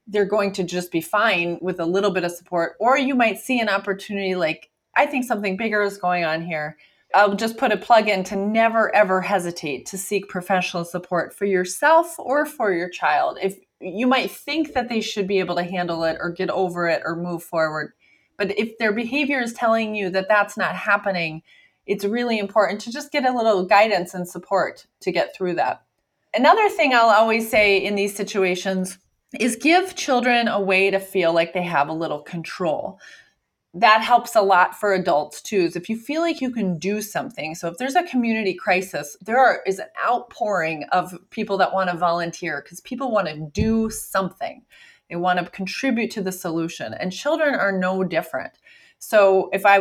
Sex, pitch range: female, 180-230 Hz